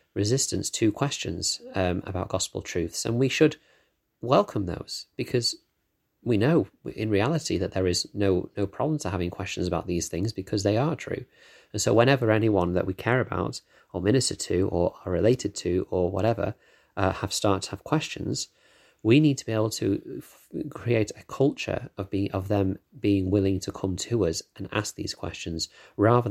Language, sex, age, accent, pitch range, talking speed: English, male, 30-49, British, 95-105 Hz, 185 wpm